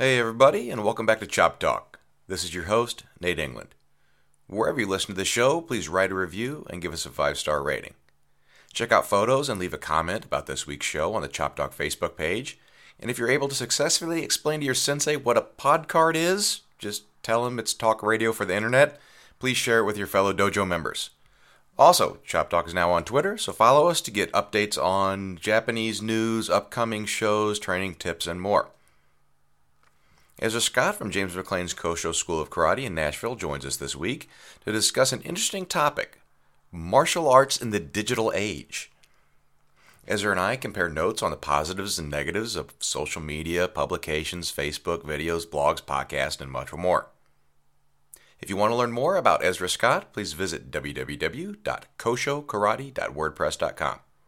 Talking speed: 175 wpm